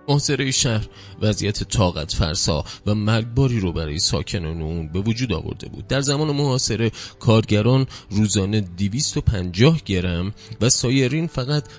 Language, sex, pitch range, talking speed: Persian, male, 85-125 Hz, 130 wpm